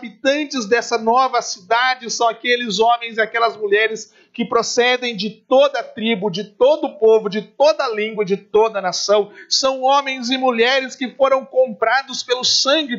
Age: 50-69